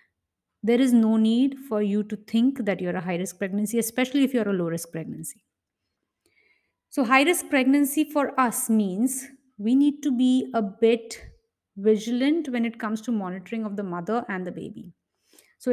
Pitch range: 185-225 Hz